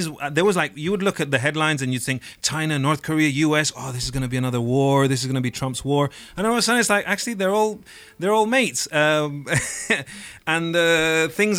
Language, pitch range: English, 125-160 Hz